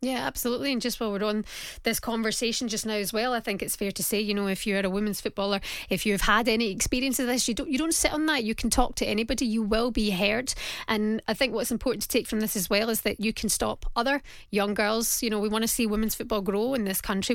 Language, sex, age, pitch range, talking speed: English, female, 20-39, 195-230 Hz, 285 wpm